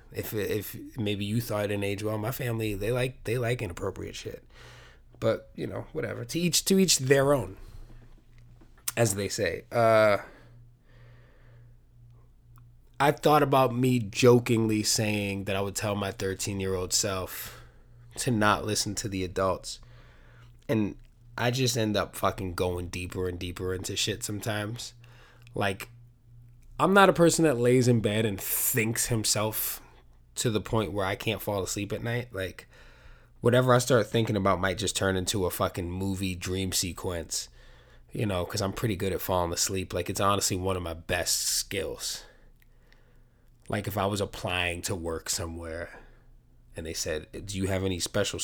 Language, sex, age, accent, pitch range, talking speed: English, male, 20-39, American, 95-120 Hz, 165 wpm